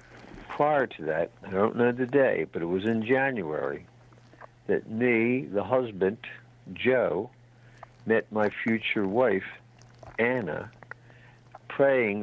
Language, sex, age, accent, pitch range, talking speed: English, male, 60-79, American, 110-125 Hz, 120 wpm